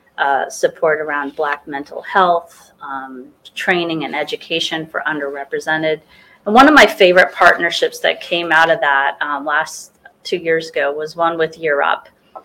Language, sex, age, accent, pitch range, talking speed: English, female, 30-49, American, 155-205 Hz, 155 wpm